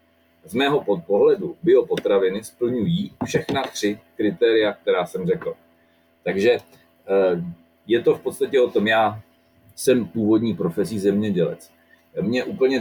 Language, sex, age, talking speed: Czech, male, 40-59, 115 wpm